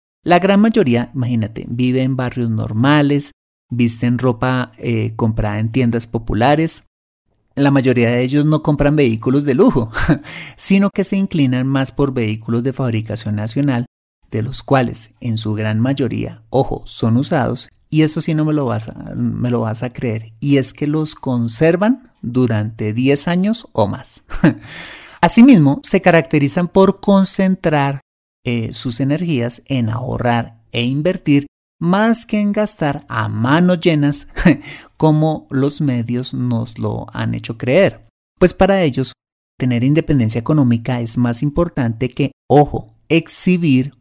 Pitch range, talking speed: 115-160 Hz, 145 wpm